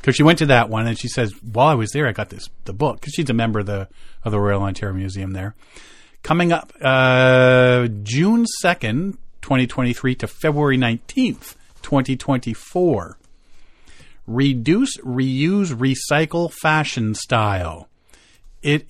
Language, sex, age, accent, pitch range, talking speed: English, male, 40-59, American, 120-170 Hz, 160 wpm